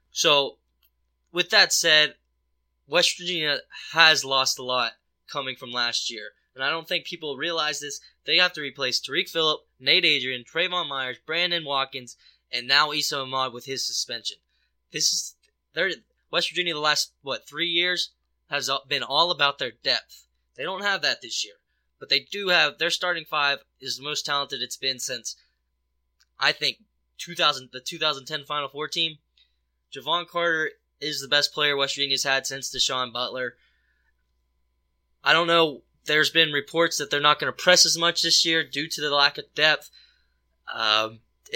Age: 10-29